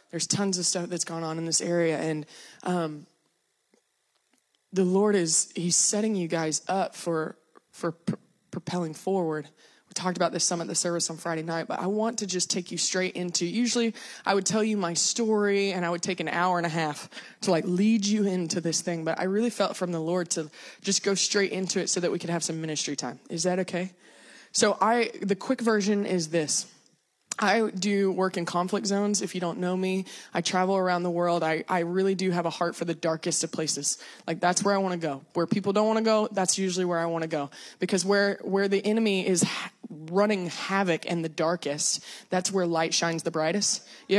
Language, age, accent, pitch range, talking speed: English, 20-39, American, 170-200 Hz, 225 wpm